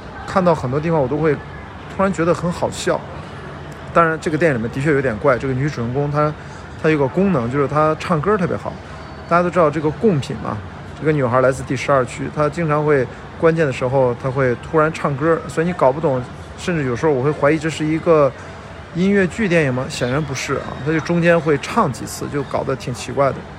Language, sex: Chinese, male